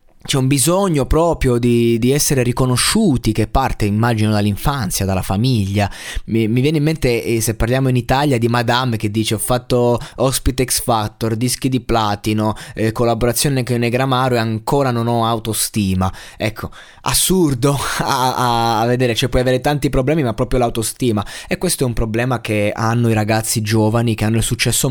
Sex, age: male, 20-39